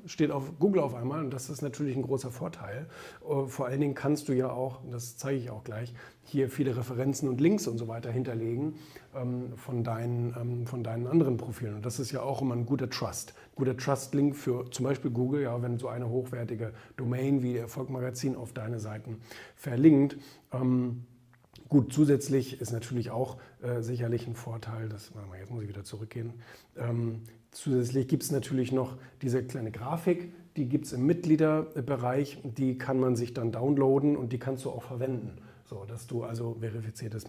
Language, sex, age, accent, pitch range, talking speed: German, male, 40-59, German, 115-140 Hz, 185 wpm